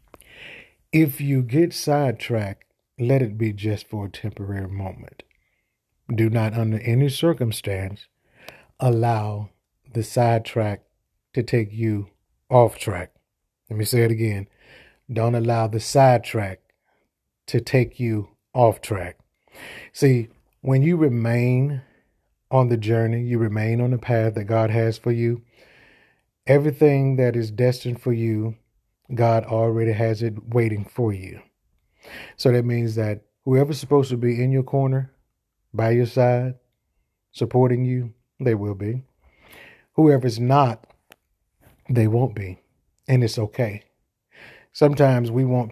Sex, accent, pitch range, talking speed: male, American, 110-125 Hz, 130 wpm